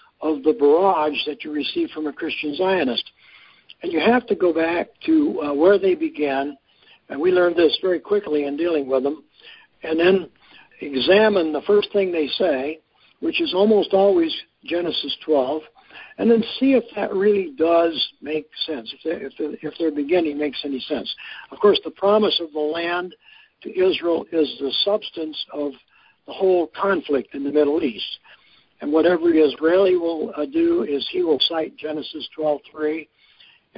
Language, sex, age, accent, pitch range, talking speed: English, male, 60-79, American, 150-195 Hz, 170 wpm